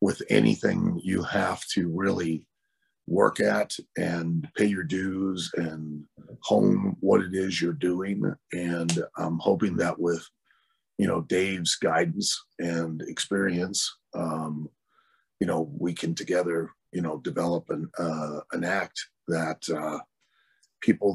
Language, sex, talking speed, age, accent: English, male, 130 wpm, 40-59, American